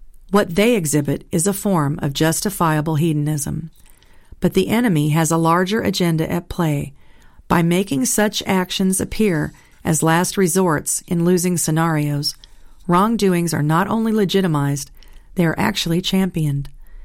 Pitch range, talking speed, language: 155-195 Hz, 135 wpm, English